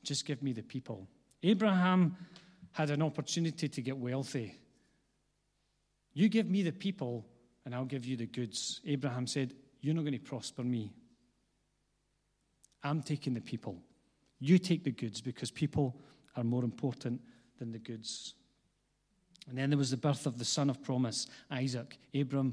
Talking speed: 155 wpm